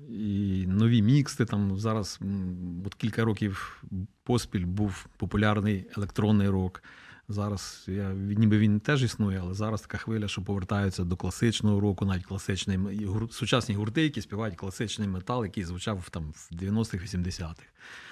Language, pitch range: Ukrainian, 95-110 Hz